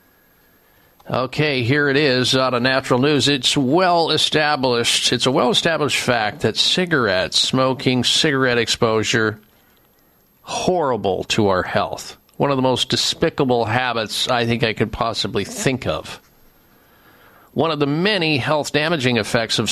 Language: English